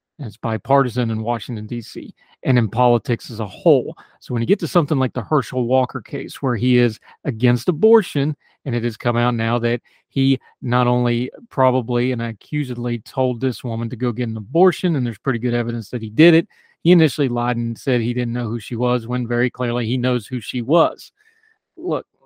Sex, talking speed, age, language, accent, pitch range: male, 210 wpm, 30-49, English, American, 115-130 Hz